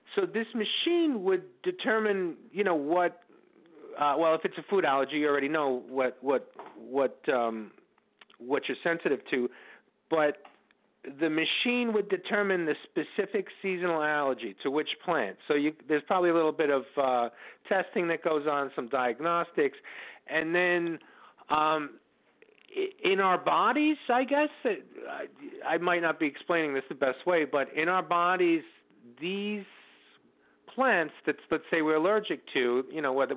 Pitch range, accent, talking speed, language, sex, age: 150-245 Hz, American, 155 wpm, English, male, 50-69